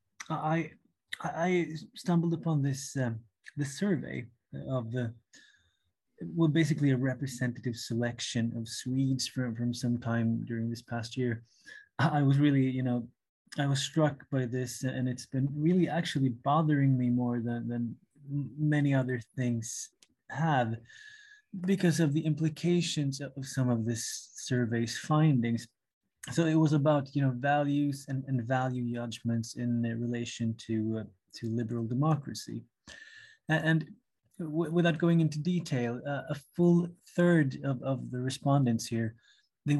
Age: 20-39